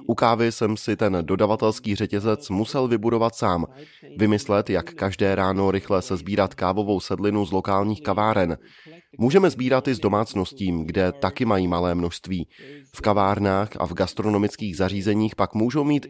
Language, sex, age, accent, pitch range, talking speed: Czech, male, 20-39, native, 95-120 Hz, 155 wpm